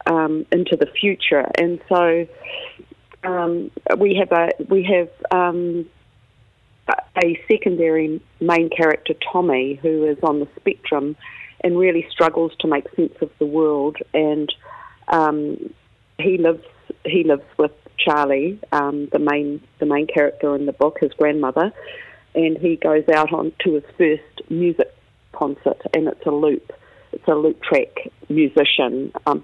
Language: English